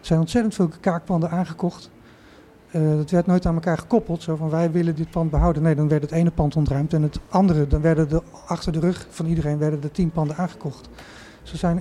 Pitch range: 150-175 Hz